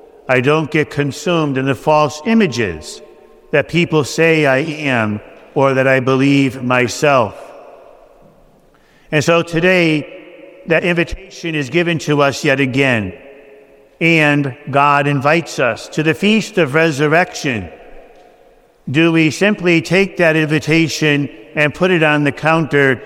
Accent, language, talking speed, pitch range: American, English, 130 wpm, 140-165 Hz